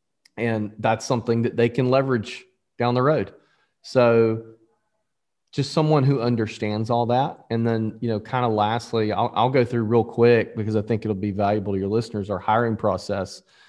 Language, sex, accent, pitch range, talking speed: English, male, American, 105-120 Hz, 185 wpm